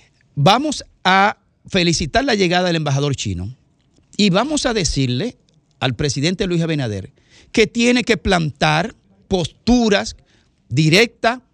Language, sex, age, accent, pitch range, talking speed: Spanish, male, 50-69, American, 135-190 Hz, 115 wpm